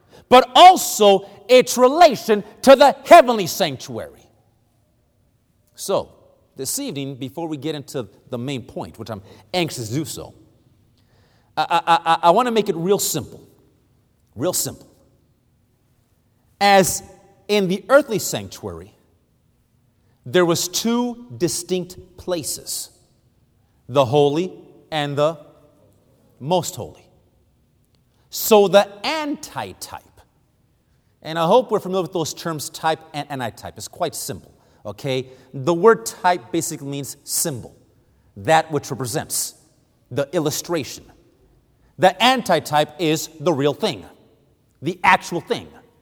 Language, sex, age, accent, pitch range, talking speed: English, male, 40-59, American, 125-190 Hz, 115 wpm